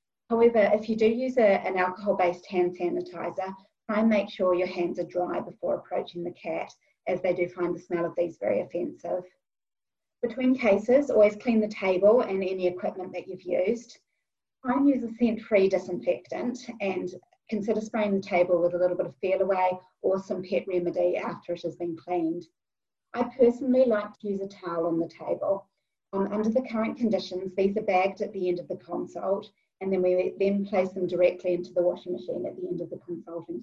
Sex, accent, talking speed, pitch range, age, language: female, Australian, 200 wpm, 180-215 Hz, 40-59, English